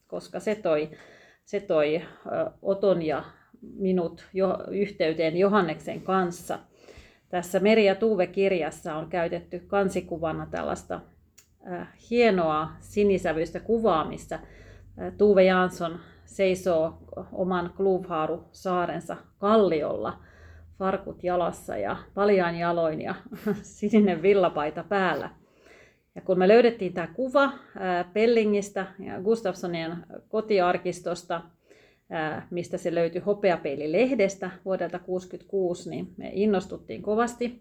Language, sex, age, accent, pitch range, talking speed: Finnish, female, 30-49, native, 165-200 Hz, 95 wpm